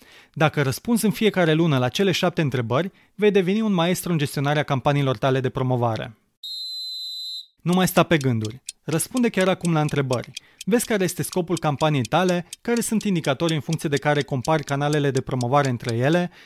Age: 30-49